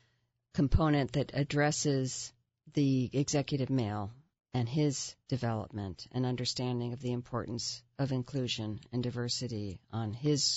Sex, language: female, English